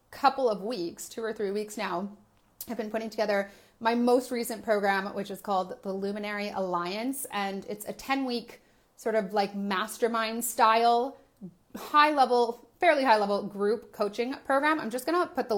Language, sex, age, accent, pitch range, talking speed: English, female, 30-49, American, 200-245 Hz, 175 wpm